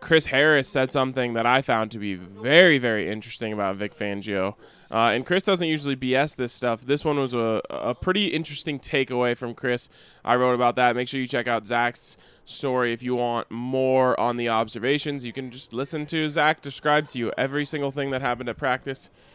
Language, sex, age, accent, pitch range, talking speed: English, male, 20-39, American, 115-150 Hz, 210 wpm